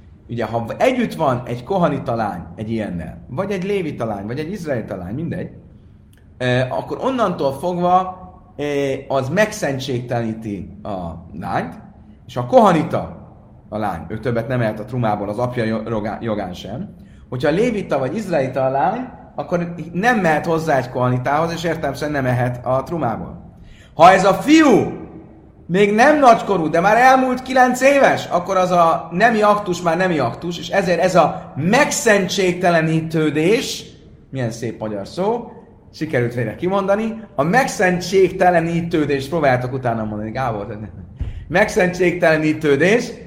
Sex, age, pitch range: male, 30-49, 115-190 Hz